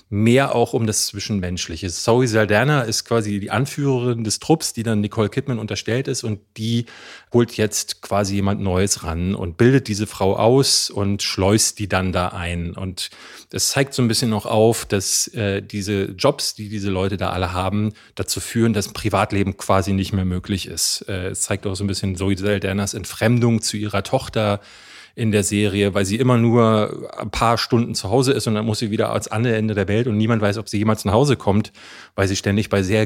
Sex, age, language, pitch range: male, 30-49, German, 100-125 Hz